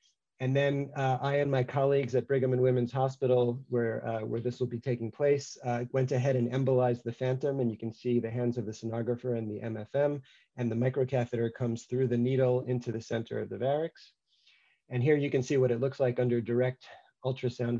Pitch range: 115-130 Hz